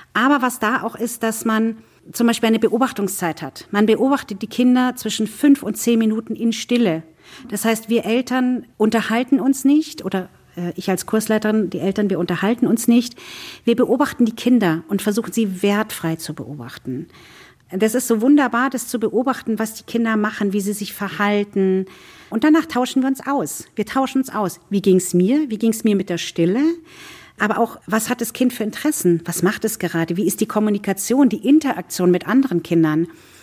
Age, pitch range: 50-69, 205-245 Hz